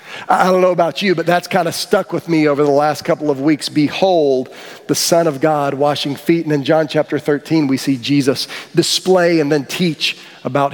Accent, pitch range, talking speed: American, 155-205 Hz, 210 wpm